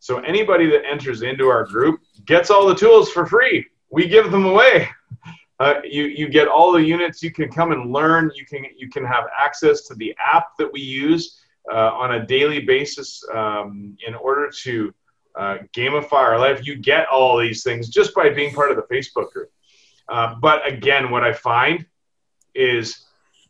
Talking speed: 190 wpm